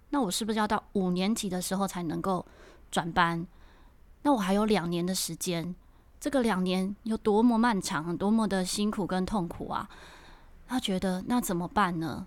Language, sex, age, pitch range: Chinese, female, 20-39, 180-215 Hz